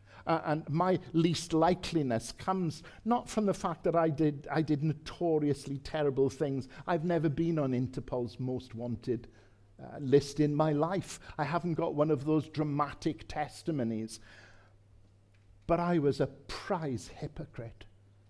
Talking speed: 145 wpm